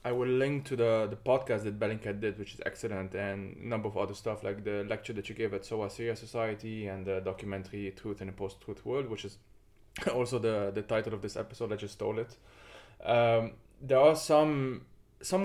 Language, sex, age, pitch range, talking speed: English, male, 20-39, 105-125 Hz, 215 wpm